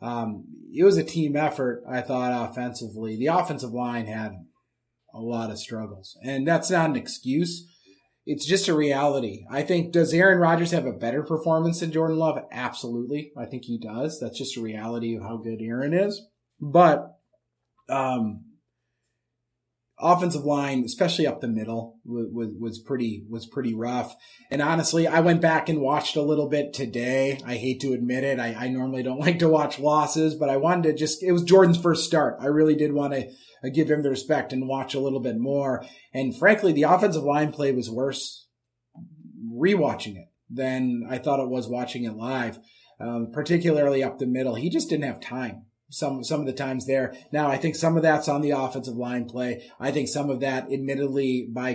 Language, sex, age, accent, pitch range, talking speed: English, male, 30-49, American, 125-160 Hz, 195 wpm